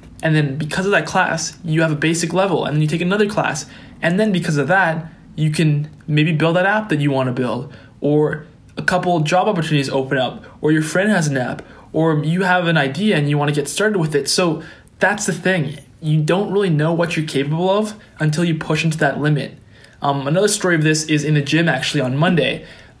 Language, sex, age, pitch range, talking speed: English, male, 20-39, 145-175 Hz, 230 wpm